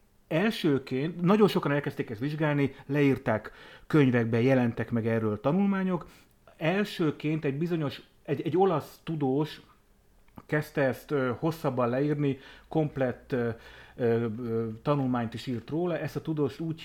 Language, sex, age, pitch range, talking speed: Hungarian, male, 30-49, 120-150 Hz, 120 wpm